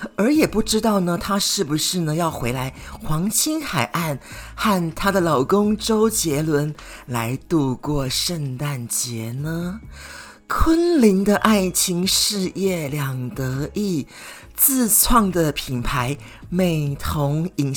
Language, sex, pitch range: Chinese, male, 135-195 Hz